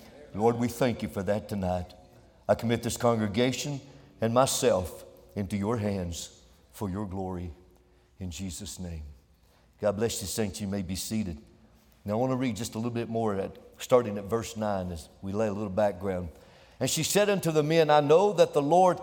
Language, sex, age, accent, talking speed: English, male, 60-79, American, 190 wpm